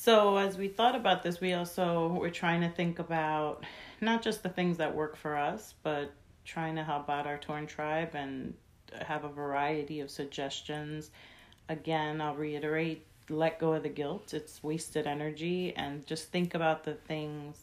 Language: English